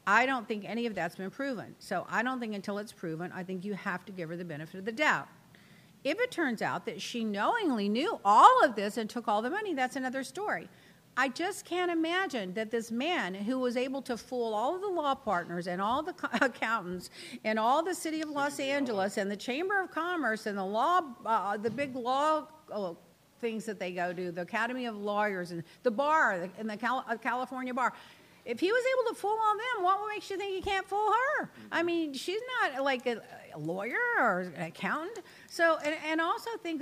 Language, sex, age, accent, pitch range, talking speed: English, female, 50-69, American, 220-320 Hz, 220 wpm